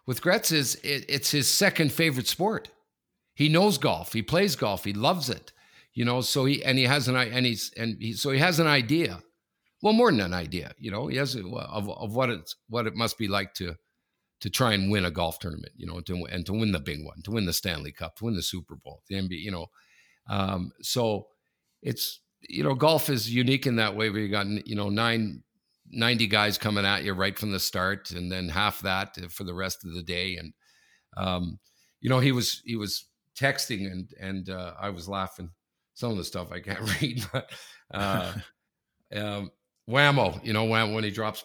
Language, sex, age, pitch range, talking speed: English, male, 50-69, 95-125 Hz, 220 wpm